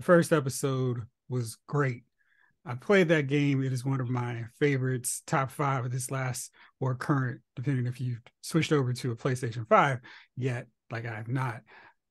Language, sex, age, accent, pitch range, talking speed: English, male, 30-49, American, 125-165 Hz, 175 wpm